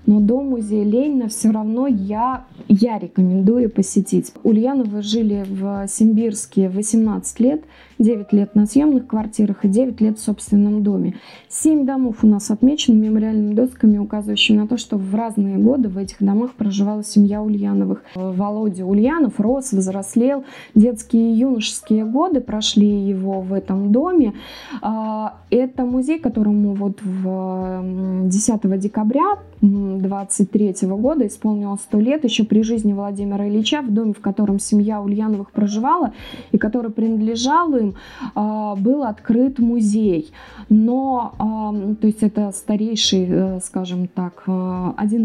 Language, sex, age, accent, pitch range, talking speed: Russian, female, 20-39, native, 200-240 Hz, 130 wpm